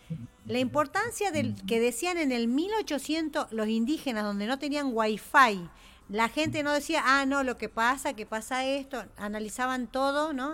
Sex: female